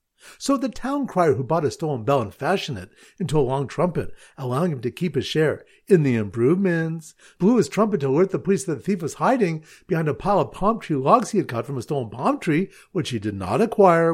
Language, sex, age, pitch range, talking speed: English, male, 50-69, 140-200 Hz, 240 wpm